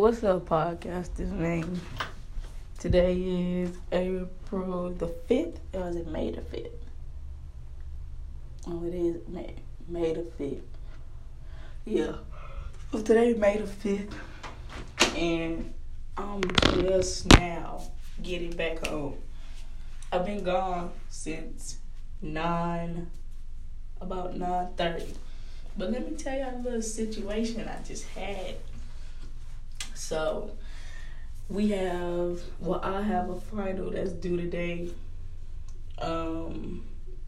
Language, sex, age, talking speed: English, female, 10-29, 105 wpm